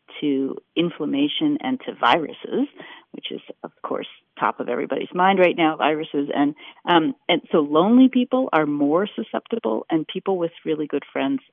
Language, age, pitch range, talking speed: English, 40-59, 155-255 Hz, 160 wpm